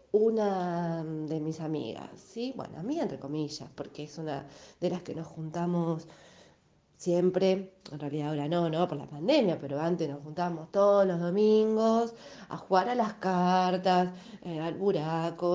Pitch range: 160-250 Hz